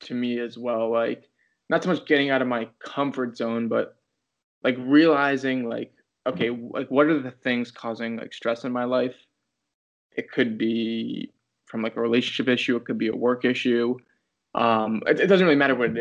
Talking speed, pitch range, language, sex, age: 195 wpm, 115-125 Hz, English, male, 20-39